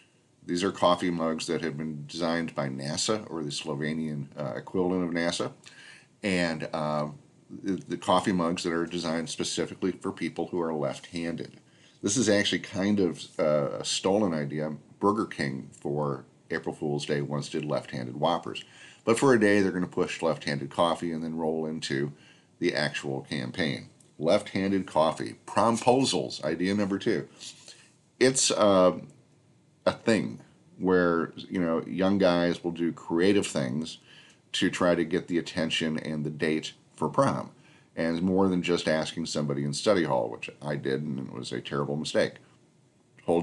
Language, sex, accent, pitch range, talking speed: English, male, American, 75-90 Hz, 160 wpm